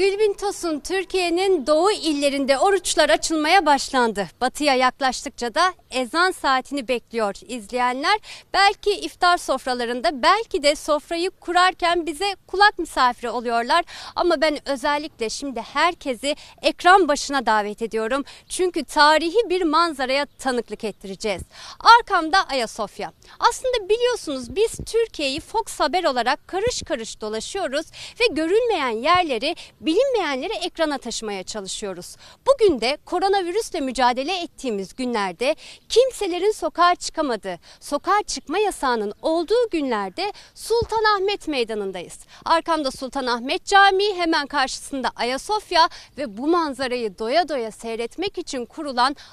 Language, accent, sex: Turkish, native, female